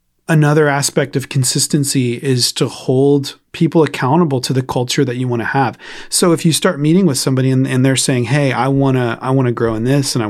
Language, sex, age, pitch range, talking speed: English, male, 30-49, 115-145 Hz, 225 wpm